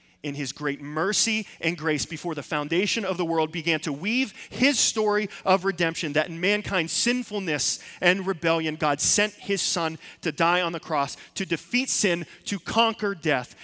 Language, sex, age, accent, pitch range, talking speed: English, male, 30-49, American, 115-175 Hz, 175 wpm